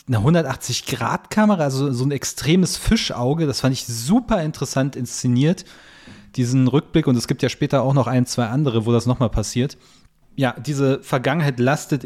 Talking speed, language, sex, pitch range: 170 wpm, German, male, 125-155 Hz